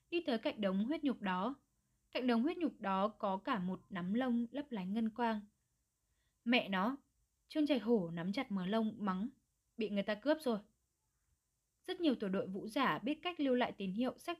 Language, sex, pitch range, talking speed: Vietnamese, female, 200-270 Hz, 205 wpm